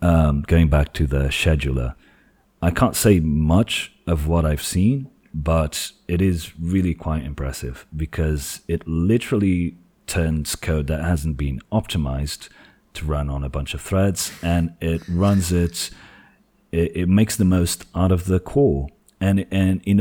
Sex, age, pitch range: male, 40-59, 75-90 Hz